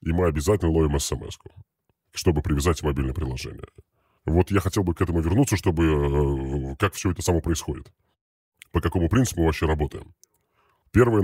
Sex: female